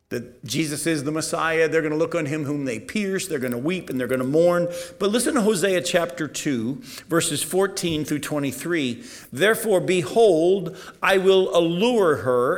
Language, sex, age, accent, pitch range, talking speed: English, male, 50-69, American, 150-180 Hz, 185 wpm